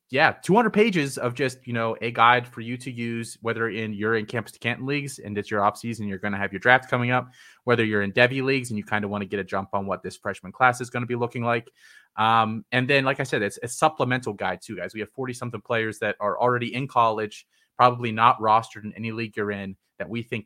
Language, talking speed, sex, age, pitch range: English, 270 wpm, male, 30-49, 100-120 Hz